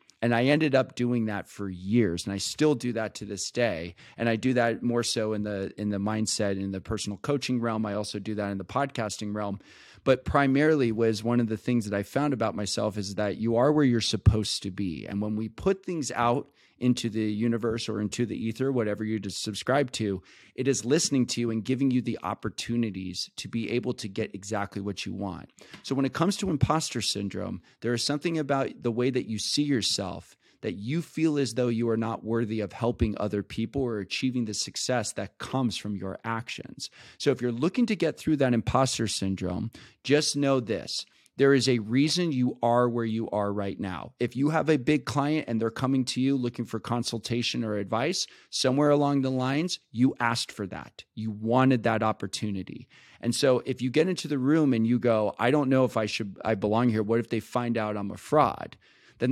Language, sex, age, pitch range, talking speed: English, male, 30-49, 105-130 Hz, 220 wpm